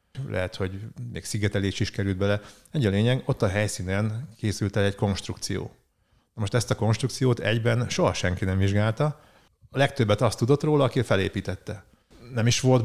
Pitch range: 95-115 Hz